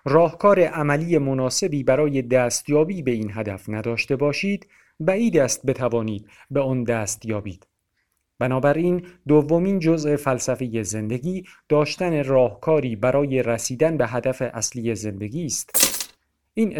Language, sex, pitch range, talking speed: Persian, male, 120-165 Hz, 120 wpm